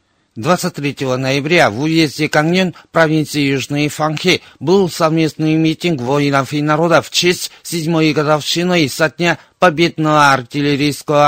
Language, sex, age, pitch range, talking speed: Russian, male, 50-69, 140-165 Hz, 115 wpm